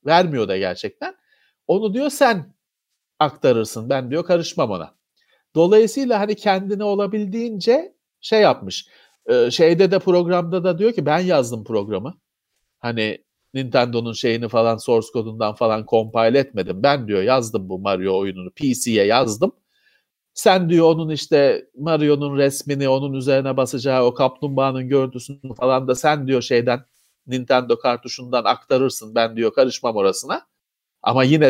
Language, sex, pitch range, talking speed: Turkish, male, 120-165 Hz, 135 wpm